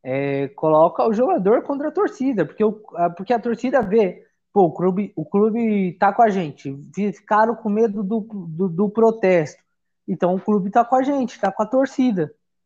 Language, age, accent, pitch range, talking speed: Portuguese, 20-39, Brazilian, 185-235 Hz, 170 wpm